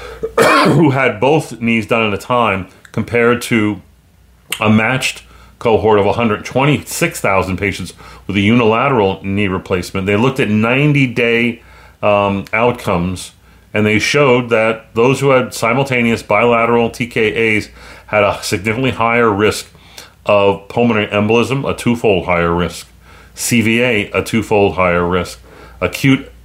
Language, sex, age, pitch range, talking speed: English, male, 40-59, 95-115 Hz, 125 wpm